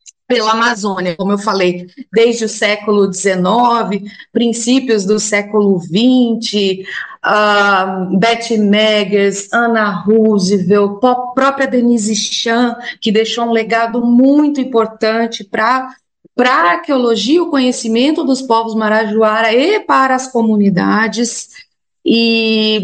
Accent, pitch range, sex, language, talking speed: Brazilian, 215-275 Hz, female, Portuguese, 110 wpm